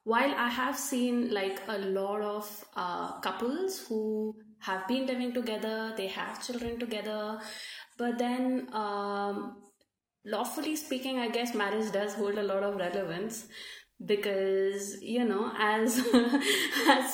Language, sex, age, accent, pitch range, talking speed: English, female, 20-39, Indian, 195-235 Hz, 135 wpm